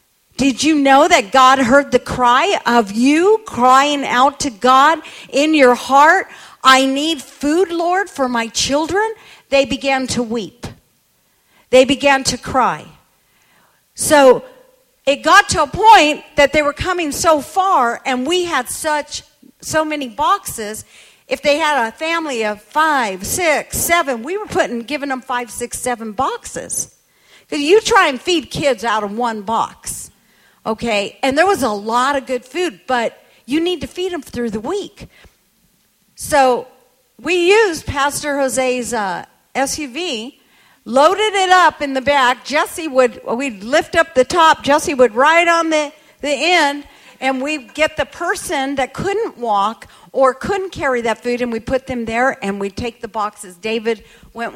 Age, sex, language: 50-69, female, English